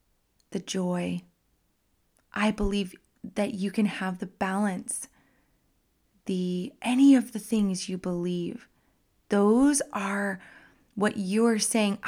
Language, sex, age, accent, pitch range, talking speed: English, female, 20-39, American, 200-240 Hz, 110 wpm